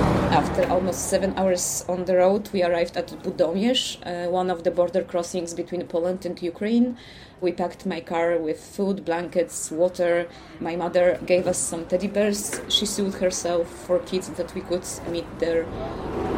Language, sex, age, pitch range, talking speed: English, female, 20-39, 165-185 Hz, 170 wpm